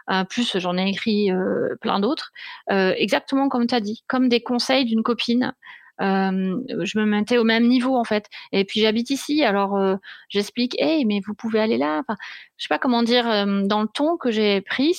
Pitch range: 210-245 Hz